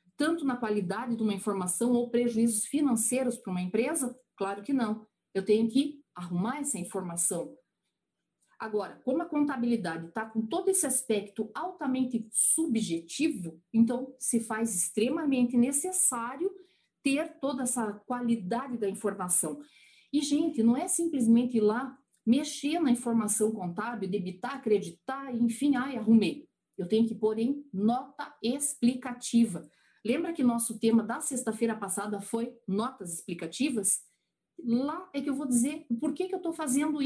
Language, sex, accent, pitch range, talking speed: Portuguese, female, Brazilian, 215-275 Hz, 140 wpm